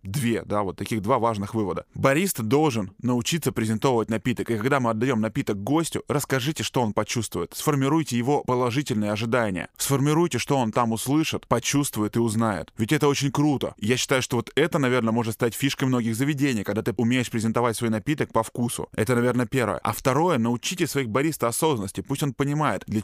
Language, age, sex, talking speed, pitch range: Russian, 10-29, male, 180 wpm, 110-140 Hz